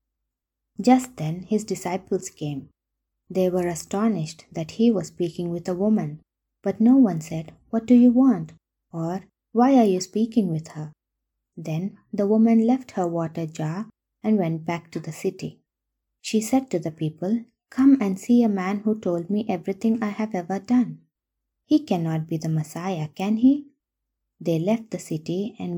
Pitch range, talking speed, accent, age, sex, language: 165-220 Hz, 170 wpm, Indian, 20-39, female, English